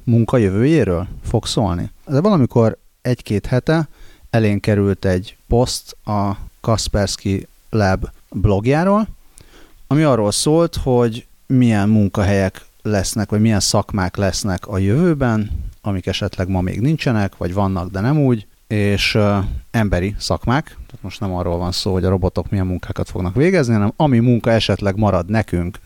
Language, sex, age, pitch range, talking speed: Hungarian, male, 30-49, 95-115 Hz, 145 wpm